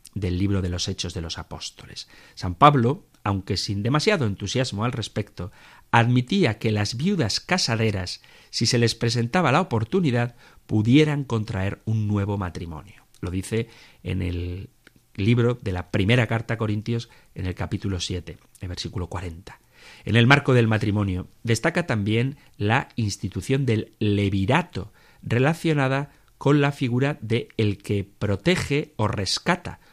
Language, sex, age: Spanish, male, 40-59